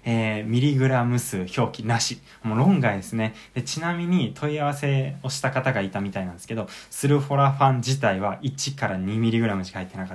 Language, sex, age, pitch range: Japanese, male, 20-39, 105-140 Hz